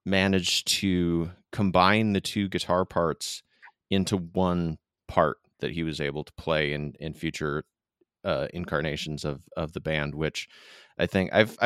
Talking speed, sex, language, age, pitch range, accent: 150 wpm, male, English, 30-49, 75-95 Hz, American